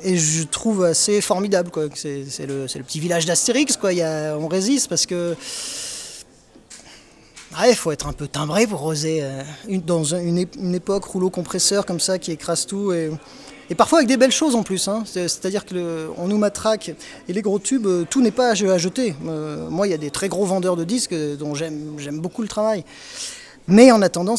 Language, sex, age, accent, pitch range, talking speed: French, male, 20-39, French, 155-200 Hz, 230 wpm